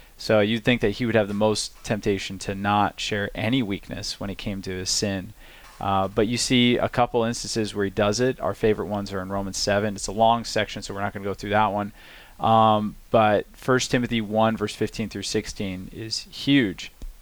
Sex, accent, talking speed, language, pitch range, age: male, American, 220 wpm, English, 105-120 Hz, 20-39